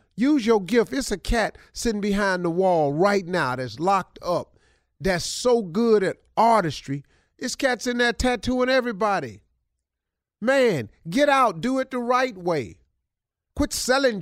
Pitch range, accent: 135-215 Hz, American